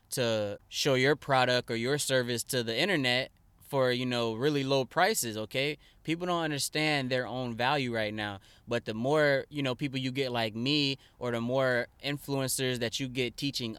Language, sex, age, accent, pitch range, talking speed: English, male, 10-29, American, 110-130 Hz, 185 wpm